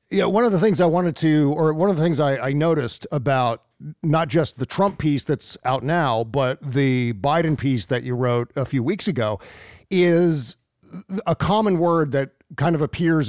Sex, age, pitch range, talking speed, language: male, 40-59, 135-180 Hz, 200 wpm, English